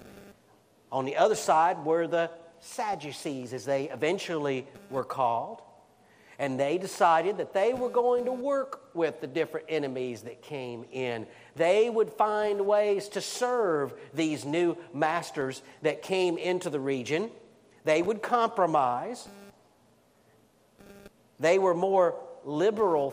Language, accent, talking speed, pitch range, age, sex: English, American, 125 wpm, 145-200 Hz, 50-69, male